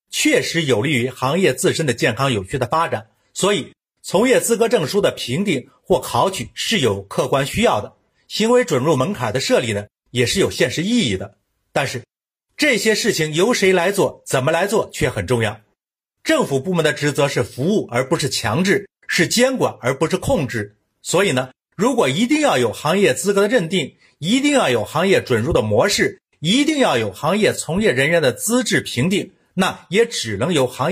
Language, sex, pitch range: Chinese, male, 125-190 Hz